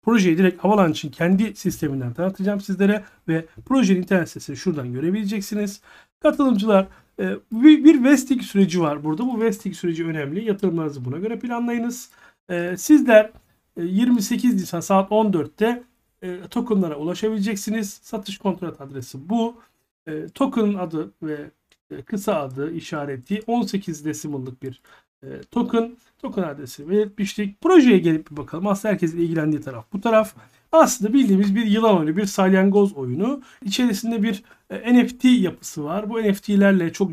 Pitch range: 175-230 Hz